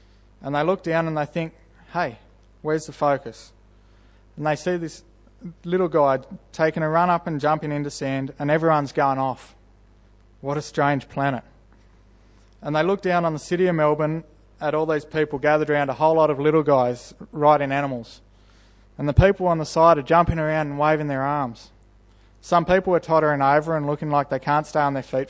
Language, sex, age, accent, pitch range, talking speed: English, male, 20-39, Australian, 115-155 Hz, 195 wpm